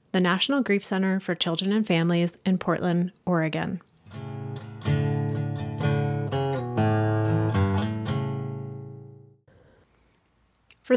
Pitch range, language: 175-215 Hz, English